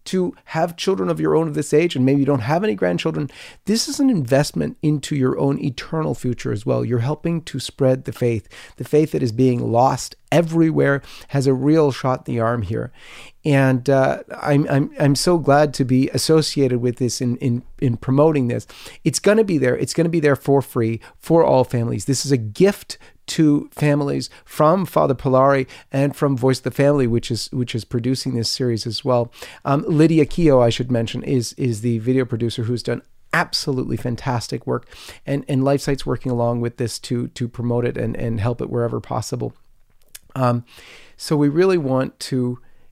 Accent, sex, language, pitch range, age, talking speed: American, male, English, 120-150 Hz, 40-59, 200 wpm